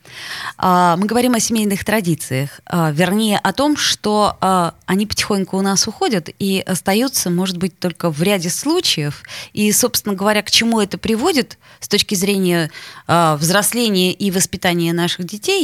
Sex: female